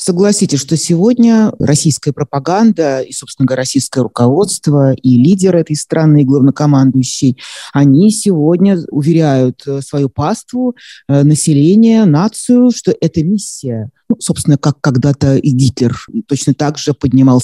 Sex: male